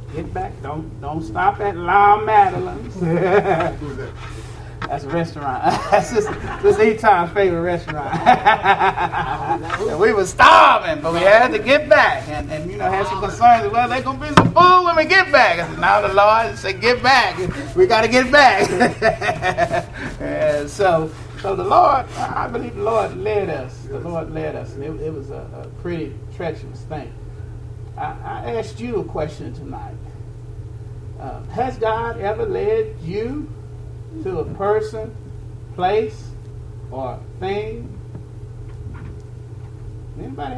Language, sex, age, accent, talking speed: English, male, 30-49, American, 150 wpm